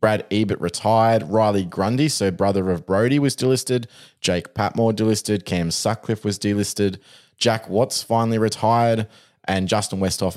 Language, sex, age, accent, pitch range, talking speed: English, male, 20-39, Australian, 95-115 Hz, 145 wpm